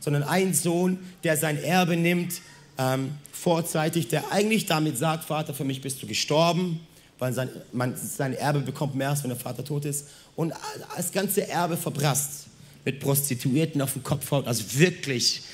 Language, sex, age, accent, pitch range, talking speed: German, male, 40-59, German, 130-160 Hz, 170 wpm